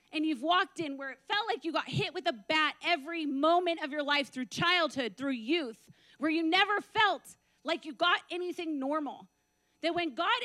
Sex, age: female, 30-49